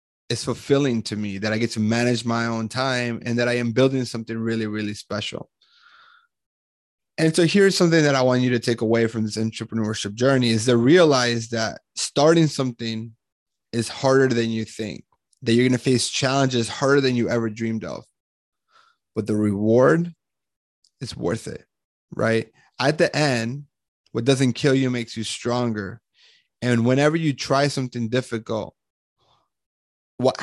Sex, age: male, 20-39